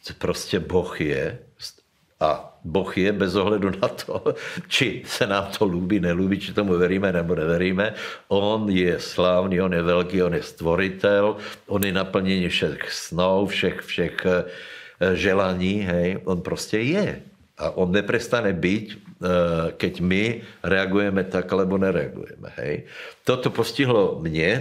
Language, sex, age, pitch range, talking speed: Slovak, male, 60-79, 90-100 Hz, 135 wpm